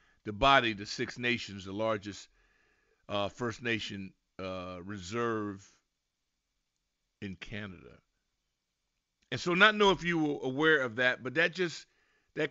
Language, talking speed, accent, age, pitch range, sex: English, 135 wpm, American, 50-69, 110-160 Hz, male